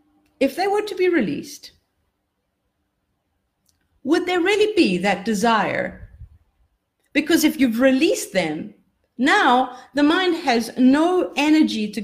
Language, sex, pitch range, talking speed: English, female, 185-295 Hz, 120 wpm